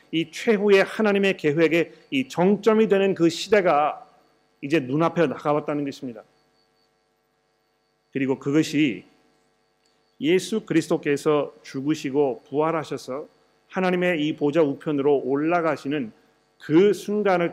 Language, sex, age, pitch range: Korean, male, 40-59, 145-180 Hz